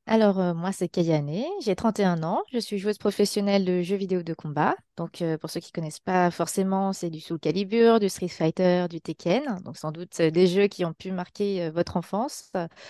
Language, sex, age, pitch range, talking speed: French, female, 20-39, 165-195 Hz, 225 wpm